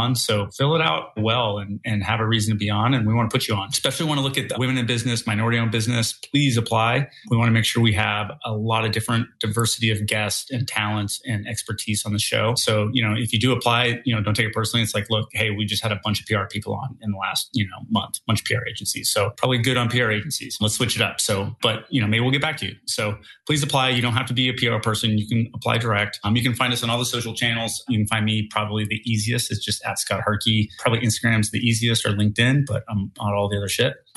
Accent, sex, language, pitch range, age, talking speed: American, male, English, 110-120 Hz, 30-49, 285 wpm